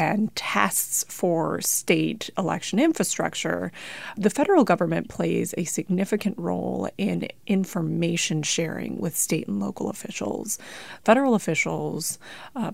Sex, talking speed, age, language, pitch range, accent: female, 115 wpm, 30-49, English, 165-215 Hz, American